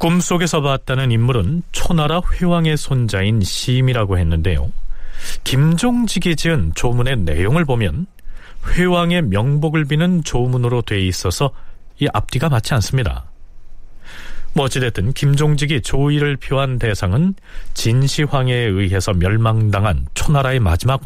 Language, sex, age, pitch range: Korean, male, 40-59, 95-150 Hz